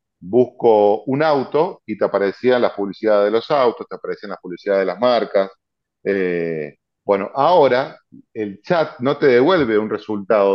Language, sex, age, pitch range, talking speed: Spanish, male, 40-59, 105-140 Hz, 160 wpm